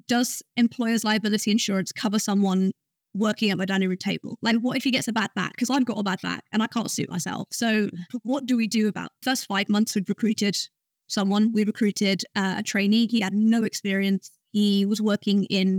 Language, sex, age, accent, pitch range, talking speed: English, female, 20-39, British, 195-225 Hz, 215 wpm